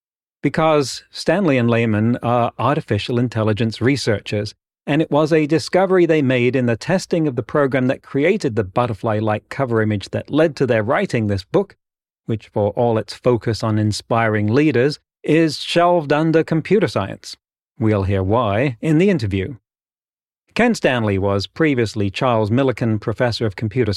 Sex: male